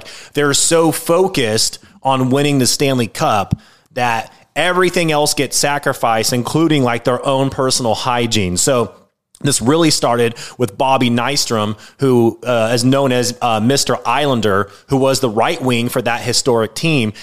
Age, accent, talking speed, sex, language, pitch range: 30-49, American, 155 wpm, male, English, 115-145 Hz